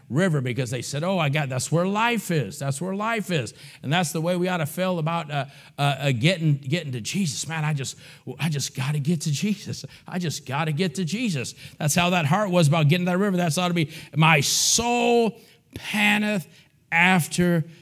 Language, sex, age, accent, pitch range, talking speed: English, male, 50-69, American, 140-185 Hz, 220 wpm